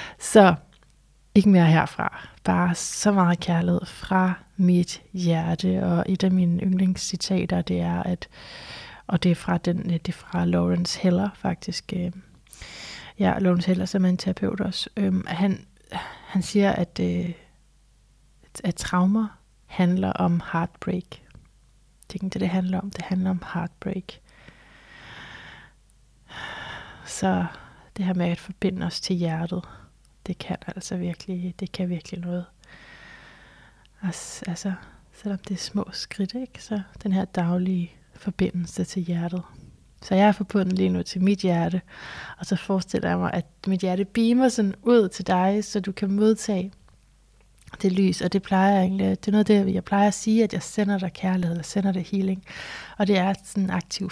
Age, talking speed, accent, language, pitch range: 30-49, 160 wpm, native, Danish, 175-195 Hz